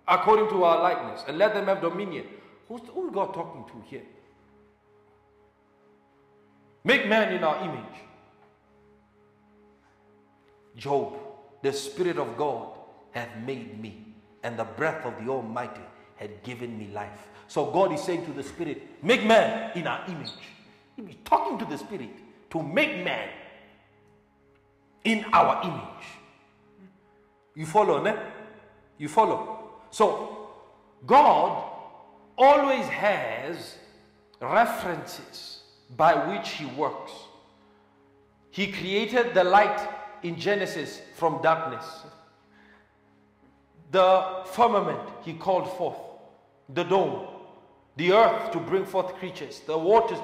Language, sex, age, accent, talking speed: English, male, 50-69, South African, 120 wpm